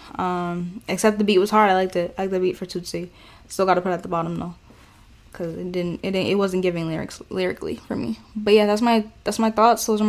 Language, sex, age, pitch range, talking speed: English, female, 10-29, 185-210 Hz, 270 wpm